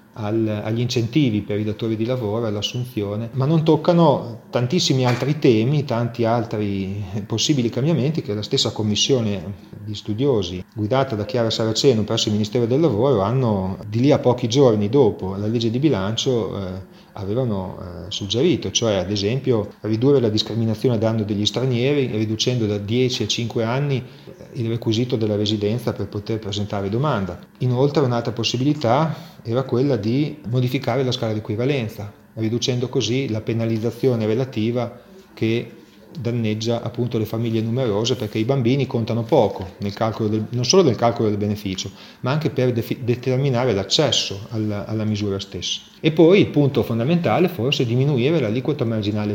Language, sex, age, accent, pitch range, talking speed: Italian, male, 30-49, native, 105-130 Hz, 150 wpm